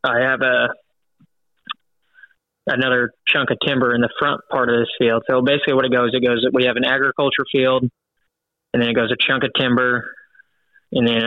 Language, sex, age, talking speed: English, male, 20-39, 190 wpm